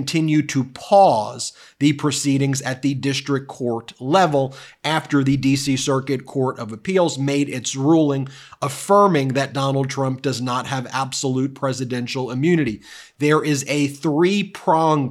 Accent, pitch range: American, 130-150 Hz